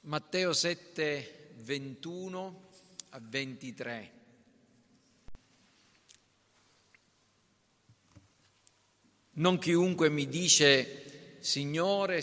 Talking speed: 50 wpm